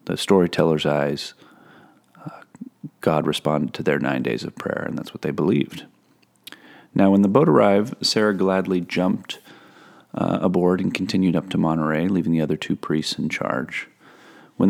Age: 30-49